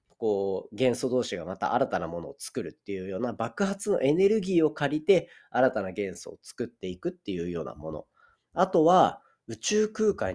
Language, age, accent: Japanese, 30-49, native